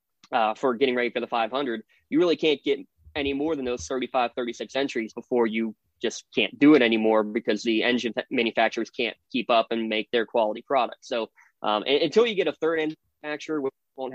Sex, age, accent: male, 20-39, American